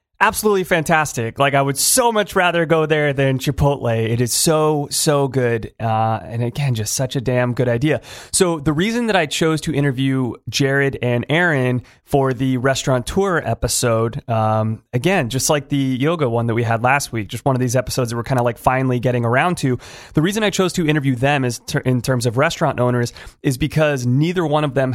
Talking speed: 210 wpm